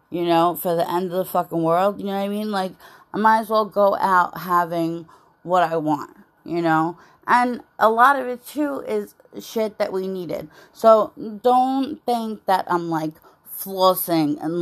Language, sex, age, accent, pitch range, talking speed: English, female, 30-49, American, 175-235 Hz, 190 wpm